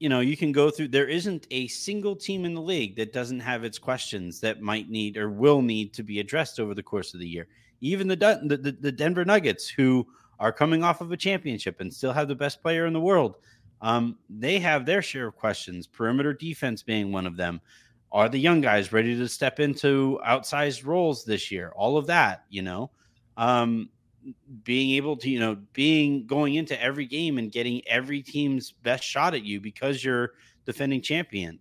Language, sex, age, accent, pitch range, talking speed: English, male, 30-49, American, 115-145 Hz, 210 wpm